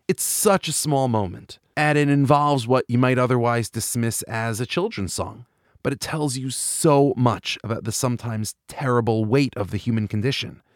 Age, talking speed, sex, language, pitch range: 30-49, 180 wpm, male, English, 115-150 Hz